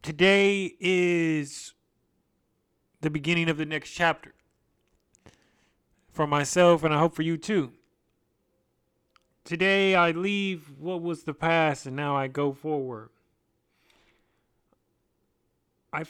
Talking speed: 110 wpm